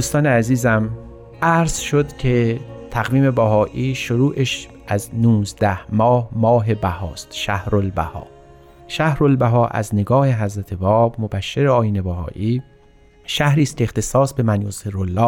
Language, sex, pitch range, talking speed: Persian, male, 100-130 Hz, 120 wpm